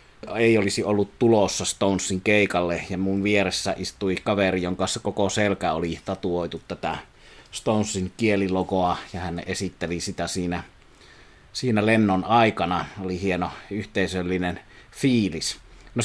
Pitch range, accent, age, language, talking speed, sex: 95-110 Hz, native, 30-49, Finnish, 120 wpm, male